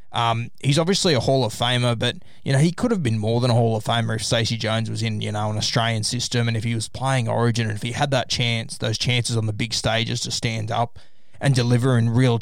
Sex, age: male, 20-39